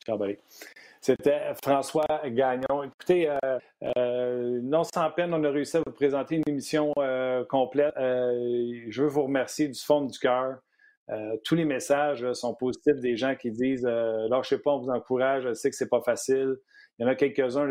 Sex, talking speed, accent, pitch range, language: male, 195 wpm, Canadian, 120-140 Hz, French